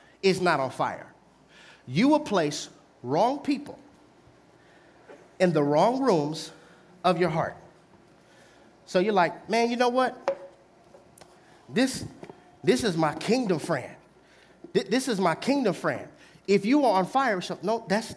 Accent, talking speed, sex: American, 135 wpm, male